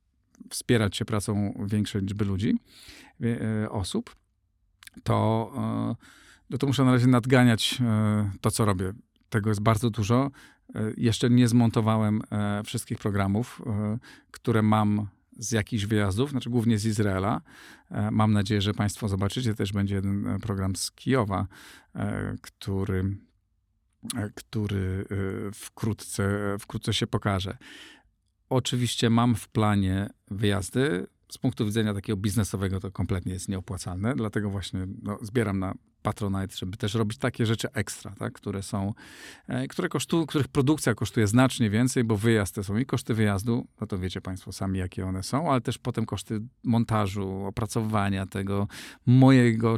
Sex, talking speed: male, 135 wpm